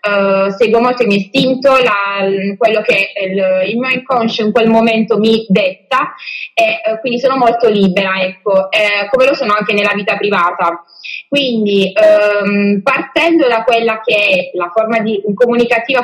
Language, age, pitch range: Italian, 20-39, 195-245 Hz